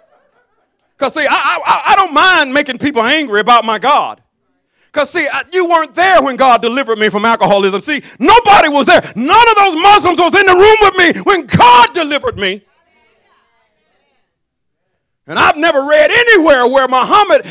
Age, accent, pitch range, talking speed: 40-59, American, 230-360 Hz, 170 wpm